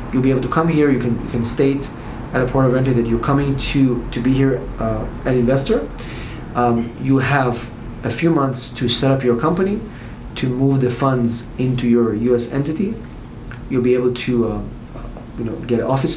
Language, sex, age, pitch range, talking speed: English, male, 30-49, 120-140 Hz, 210 wpm